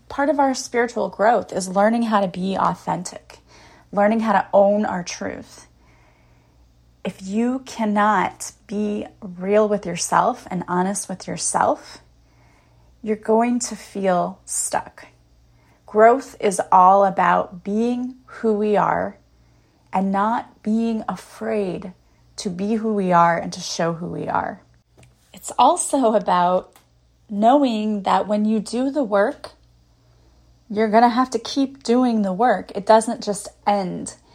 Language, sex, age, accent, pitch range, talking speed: English, female, 30-49, American, 185-225 Hz, 140 wpm